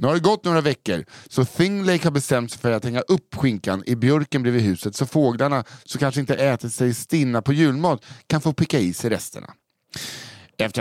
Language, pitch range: English, 120-155 Hz